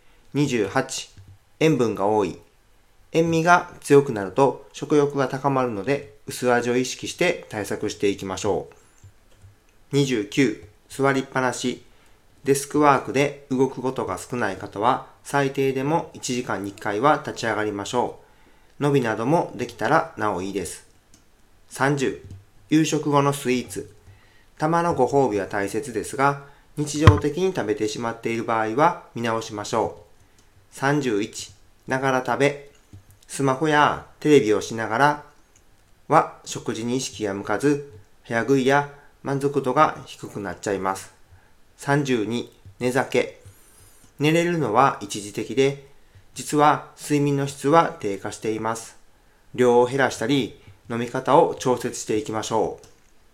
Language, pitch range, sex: Japanese, 105-140 Hz, male